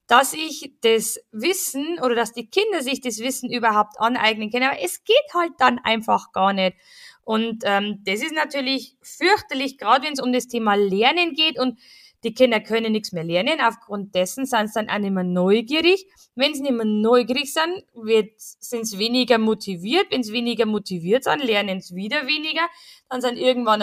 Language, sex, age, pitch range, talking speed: German, female, 20-39, 220-285 Hz, 185 wpm